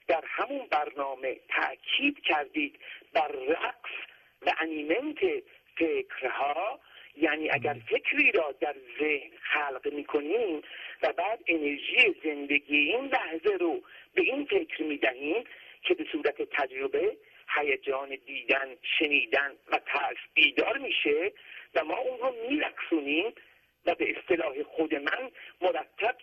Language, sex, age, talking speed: Persian, male, 50-69, 120 wpm